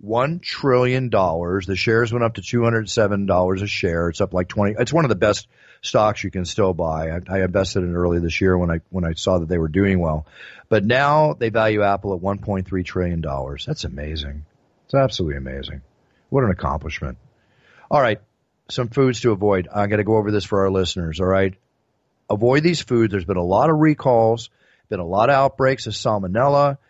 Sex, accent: male, American